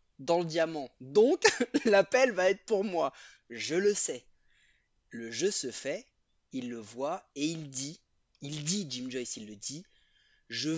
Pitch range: 125-155 Hz